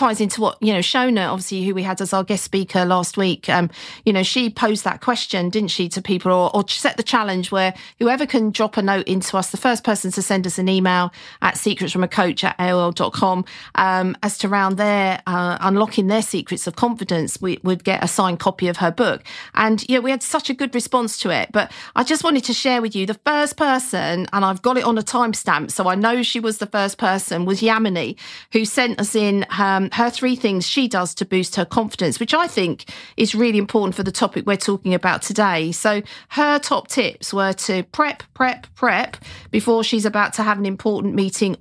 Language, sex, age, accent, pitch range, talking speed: English, female, 40-59, British, 185-230 Hz, 220 wpm